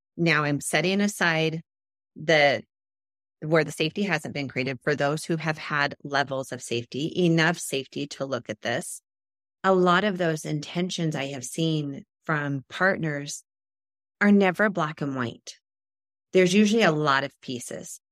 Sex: female